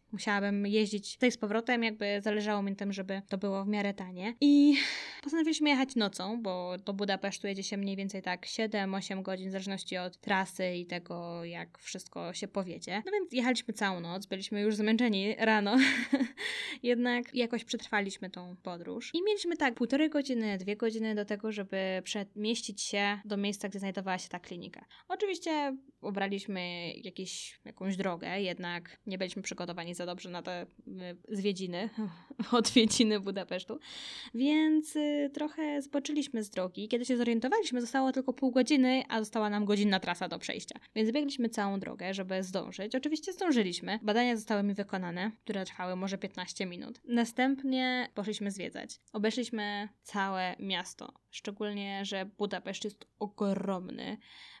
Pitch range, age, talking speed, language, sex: 195-245 Hz, 10-29, 150 wpm, Polish, female